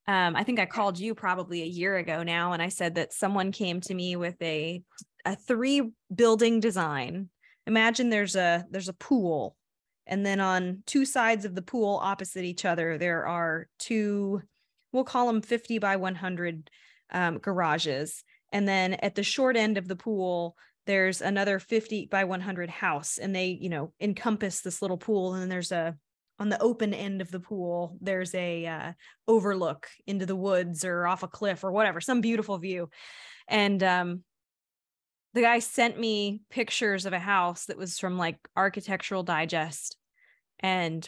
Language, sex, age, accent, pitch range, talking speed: English, female, 20-39, American, 175-205 Hz, 175 wpm